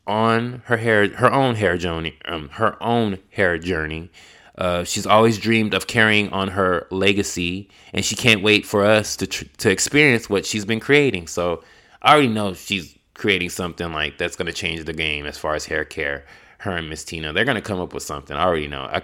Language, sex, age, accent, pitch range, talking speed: English, male, 20-39, American, 85-110 Hz, 210 wpm